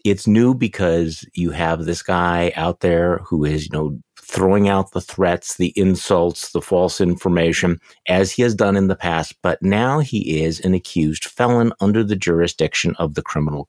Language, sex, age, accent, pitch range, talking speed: English, male, 50-69, American, 85-110 Hz, 185 wpm